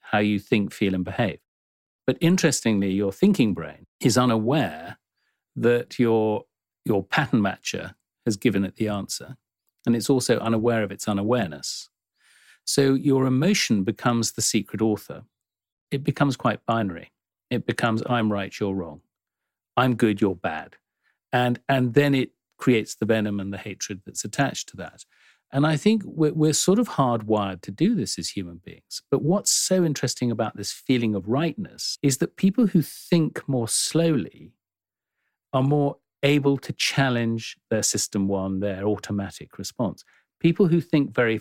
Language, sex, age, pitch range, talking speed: English, male, 50-69, 105-140 Hz, 160 wpm